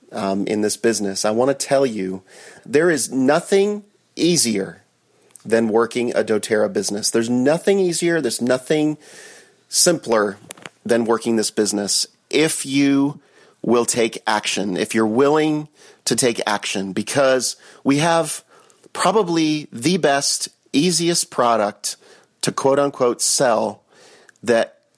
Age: 40-59